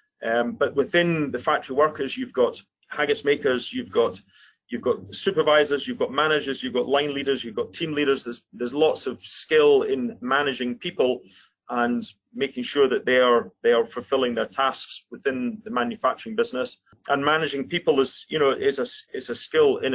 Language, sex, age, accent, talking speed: English, male, 30-49, British, 185 wpm